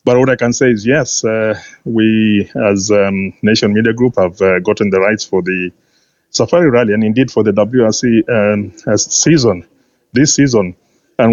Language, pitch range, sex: English, 105-120 Hz, male